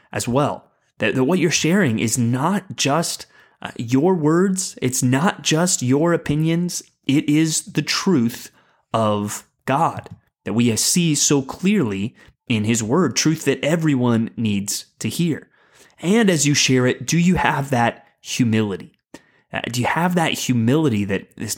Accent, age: American, 30-49